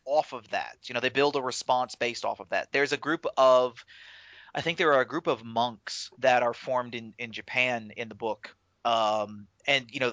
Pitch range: 115-150 Hz